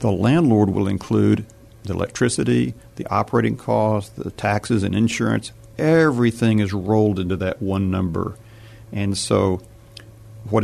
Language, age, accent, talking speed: English, 50-69, American, 130 wpm